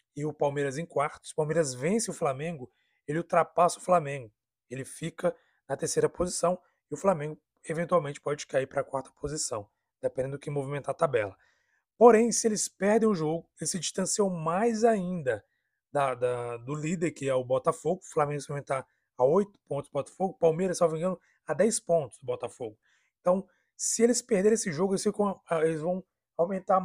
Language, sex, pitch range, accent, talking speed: Portuguese, male, 145-190 Hz, Brazilian, 185 wpm